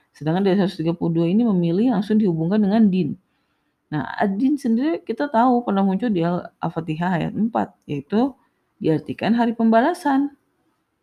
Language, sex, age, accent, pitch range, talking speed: Indonesian, female, 30-49, native, 150-205 Hz, 130 wpm